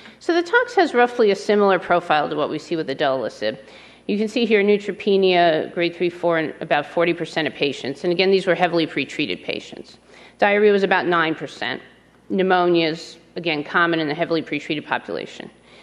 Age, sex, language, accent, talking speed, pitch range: 40-59, female, English, American, 180 wpm, 165-200 Hz